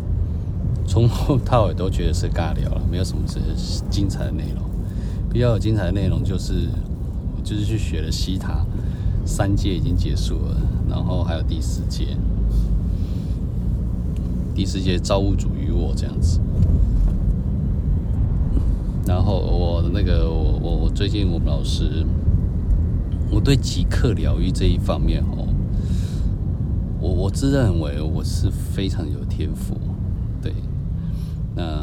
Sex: male